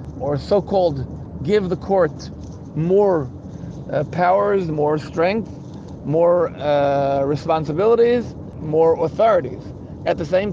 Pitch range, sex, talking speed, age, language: 145-175 Hz, male, 105 wpm, 50-69, English